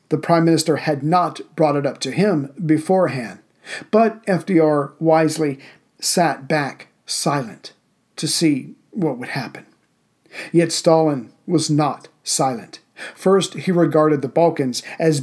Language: English